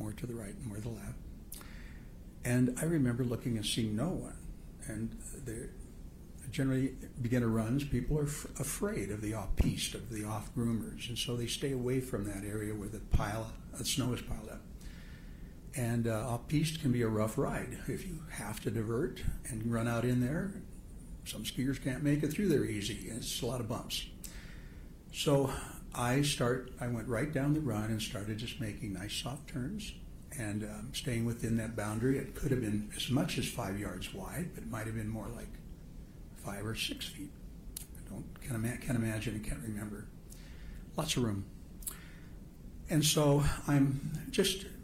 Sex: male